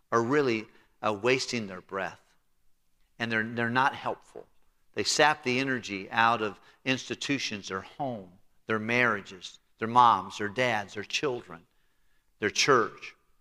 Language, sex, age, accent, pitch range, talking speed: English, male, 50-69, American, 110-135 Hz, 135 wpm